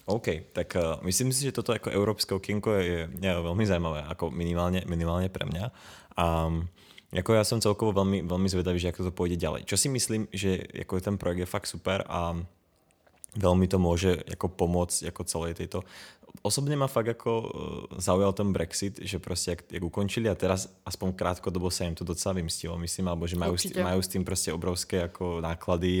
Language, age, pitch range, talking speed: Czech, 20-39, 85-95 Hz, 185 wpm